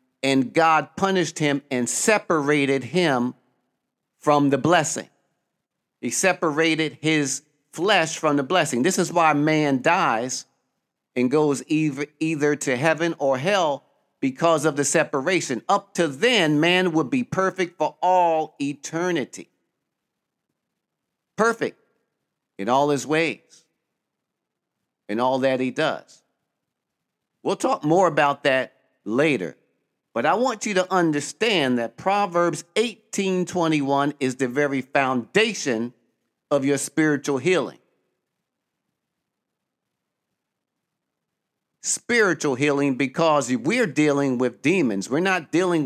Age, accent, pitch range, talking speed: 50-69, American, 135-170 Hz, 115 wpm